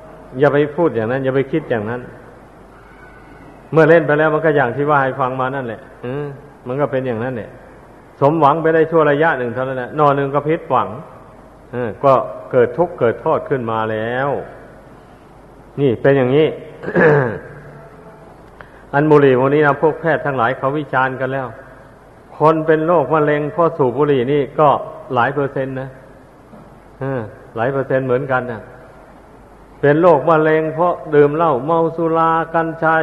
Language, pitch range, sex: Thai, 130-155 Hz, male